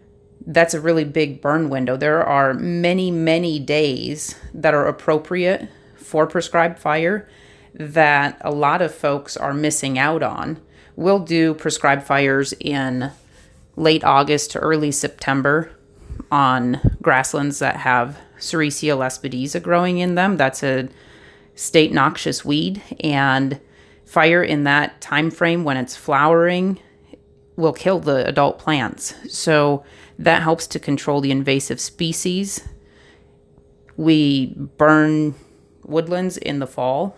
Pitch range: 140-165 Hz